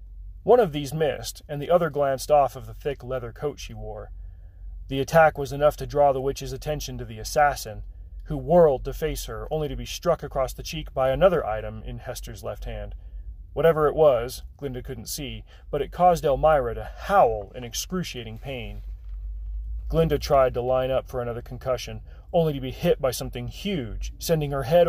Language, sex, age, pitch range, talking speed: English, male, 30-49, 110-145 Hz, 195 wpm